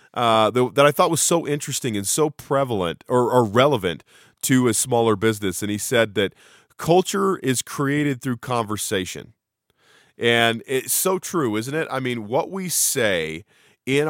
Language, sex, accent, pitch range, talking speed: English, male, American, 110-155 Hz, 160 wpm